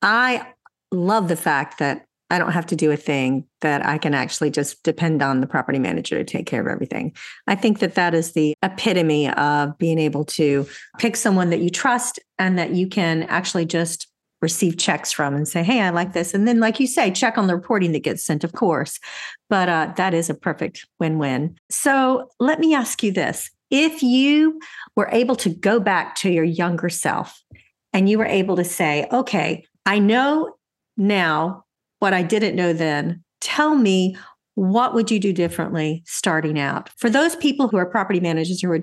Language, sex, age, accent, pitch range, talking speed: English, female, 40-59, American, 165-225 Hz, 200 wpm